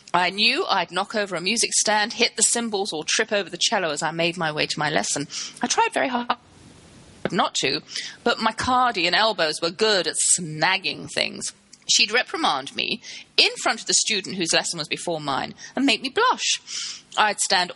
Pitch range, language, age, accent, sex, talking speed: 165-230 Hz, English, 30-49, British, female, 200 wpm